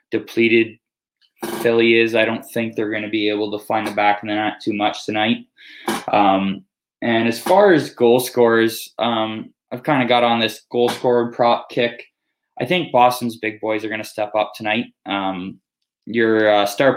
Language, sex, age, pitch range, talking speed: English, male, 20-39, 105-125 Hz, 190 wpm